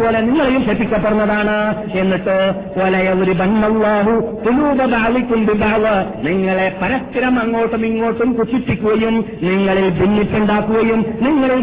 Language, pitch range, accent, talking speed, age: Malayalam, 190-235 Hz, native, 55 wpm, 50-69